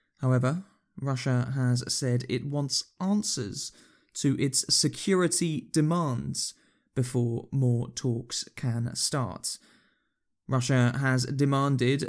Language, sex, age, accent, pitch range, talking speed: English, male, 20-39, British, 125-145 Hz, 95 wpm